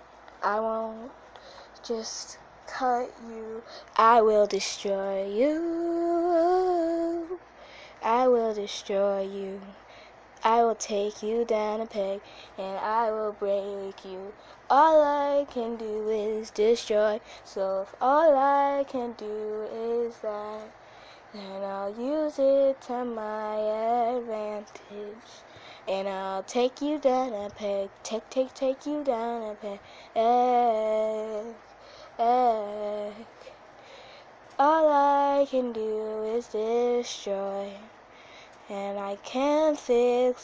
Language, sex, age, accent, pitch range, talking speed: English, female, 10-29, American, 210-250 Hz, 105 wpm